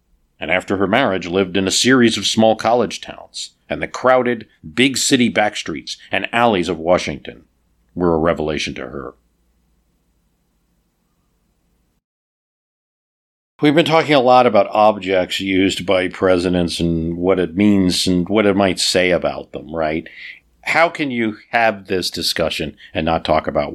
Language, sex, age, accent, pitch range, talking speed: English, male, 50-69, American, 85-110 Hz, 145 wpm